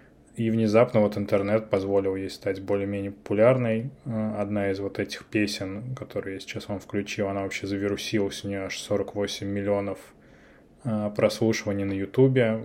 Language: Russian